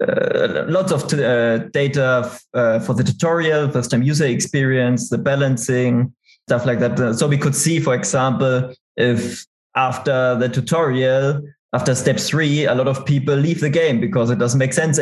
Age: 20-39